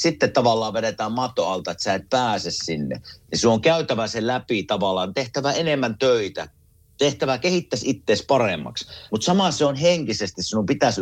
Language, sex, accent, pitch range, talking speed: Finnish, male, native, 100-140 Hz, 170 wpm